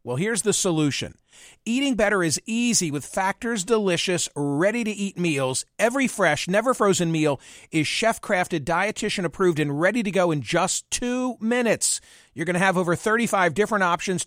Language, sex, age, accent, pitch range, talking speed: English, male, 50-69, American, 165-220 Hz, 175 wpm